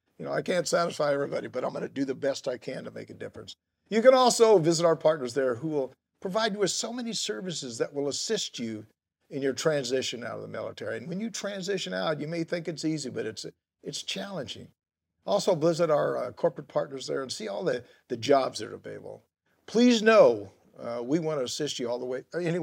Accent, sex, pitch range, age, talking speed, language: American, male, 140-200 Hz, 50-69, 230 wpm, English